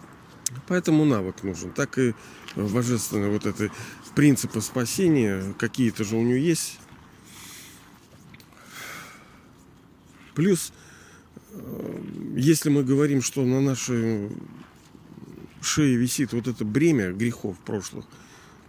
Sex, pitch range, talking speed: male, 110-140 Hz, 95 wpm